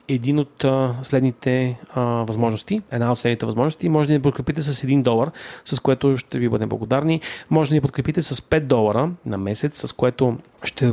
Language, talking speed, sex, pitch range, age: Bulgarian, 185 wpm, male, 115-140 Hz, 30-49